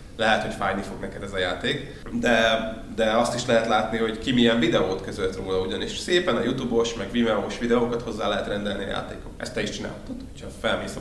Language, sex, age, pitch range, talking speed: Hungarian, male, 20-39, 105-120 Hz, 215 wpm